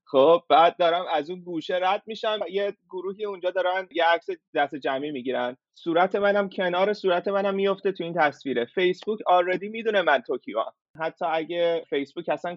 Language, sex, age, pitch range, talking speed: Persian, male, 30-49, 140-180 Hz, 175 wpm